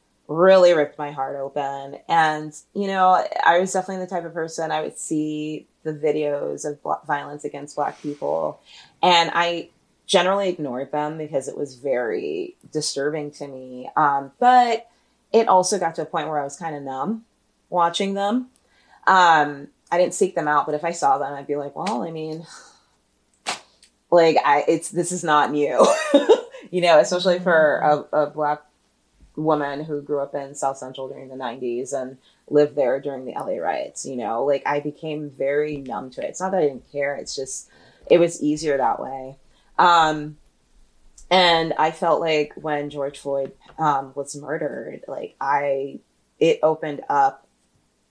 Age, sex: 30-49, female